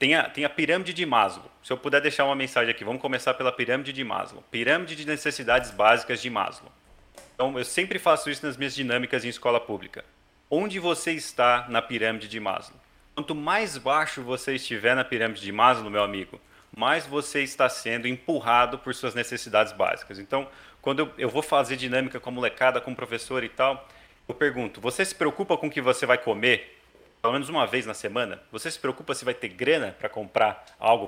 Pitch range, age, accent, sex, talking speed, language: 115-145 Hz, 30-49, Brazilian, male, 205 wpm, Portuguese